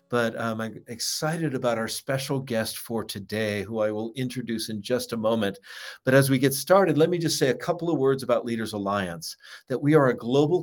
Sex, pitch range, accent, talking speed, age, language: male, 115-140 Hz, American, 220 wpm, 50-69, English